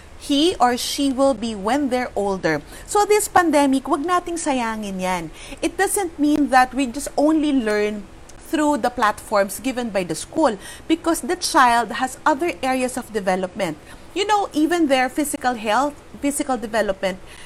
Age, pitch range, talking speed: 40-59, 220-300 Hz, 160 wpm